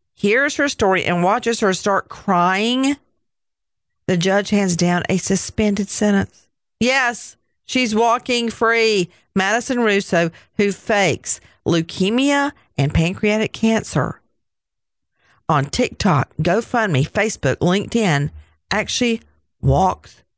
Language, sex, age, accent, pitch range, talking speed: English, female, 50-69, American, 170-205 Hz, 100 wpm